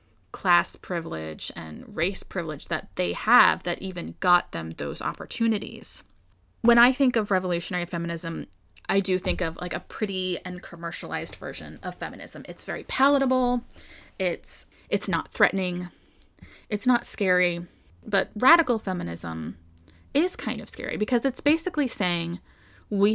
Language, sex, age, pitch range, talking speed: English, female, 20-39, 170-215 Hz, 140 wpm